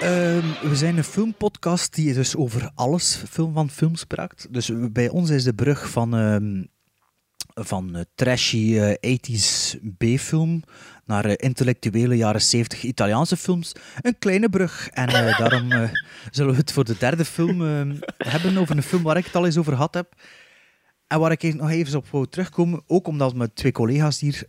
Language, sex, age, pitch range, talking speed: Dutch, male, 30-49, 115-160 Hz, 185 wpm